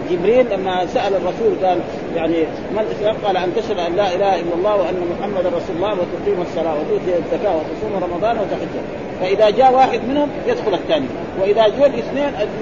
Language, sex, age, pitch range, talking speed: Arabic, male, 40-59, 190-240 Hz, 170 wpm